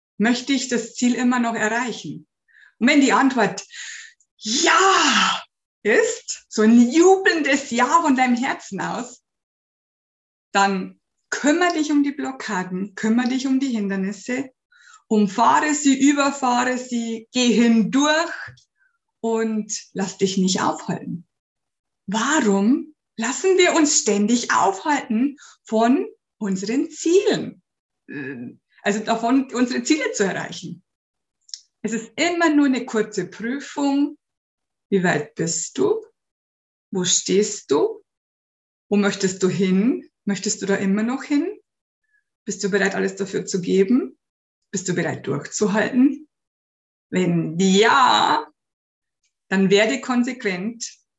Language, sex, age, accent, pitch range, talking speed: German, female, 50-69, German, 200-285 Hz, 115 wpm